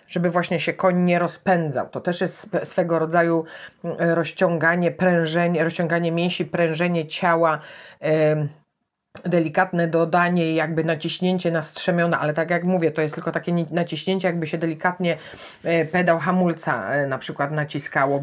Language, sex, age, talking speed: Polish, female, 40-59, 130 wpm